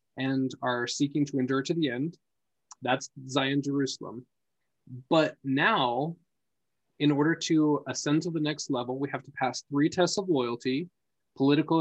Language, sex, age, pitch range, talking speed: English, male, 20-39, 130-155 Hz, 150 wpm